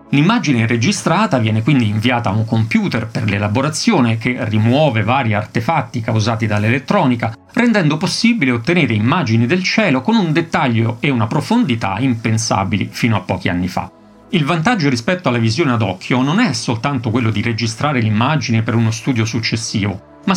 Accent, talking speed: native, 155 wpm